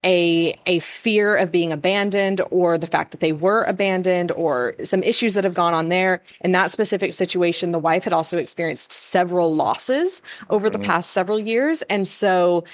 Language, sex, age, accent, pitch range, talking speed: English, female, 20-39, American, 170-210 Hz, 185 wpm